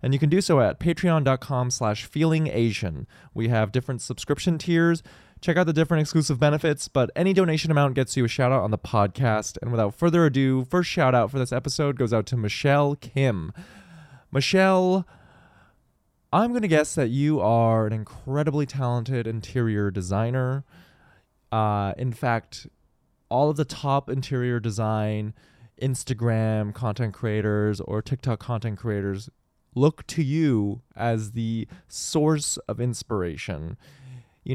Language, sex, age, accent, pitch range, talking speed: English, male, 20-39, American, 110-145 Hz, 145 wpm